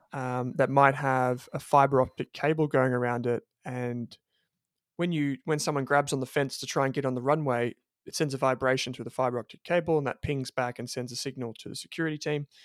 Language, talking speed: English, 230 wpm